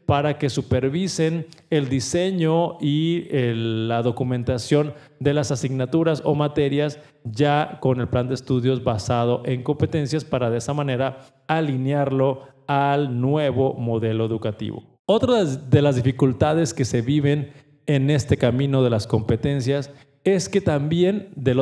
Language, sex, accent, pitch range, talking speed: Spanish, male, Mexican, 130-170 Hz, 135 wpm